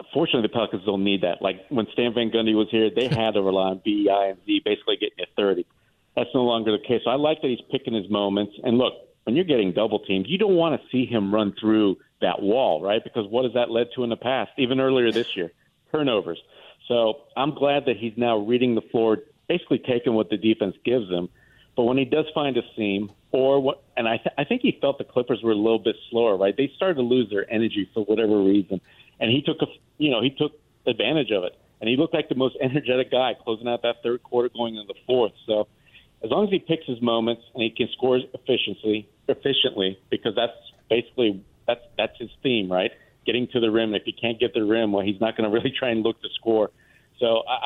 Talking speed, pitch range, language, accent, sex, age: 255 wpm, 110-130 Hz, English, American, male, 50-69